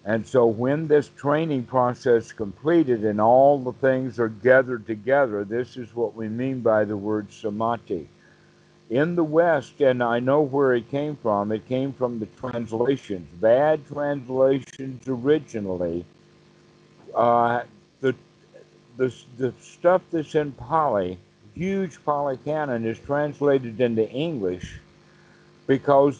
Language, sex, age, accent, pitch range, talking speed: English, male, 60-79, American, 115-145 Hz, 130 wpm